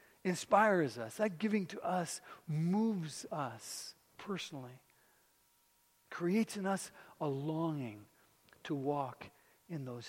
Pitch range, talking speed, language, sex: 130-180 Hz, 105 wpm, English, male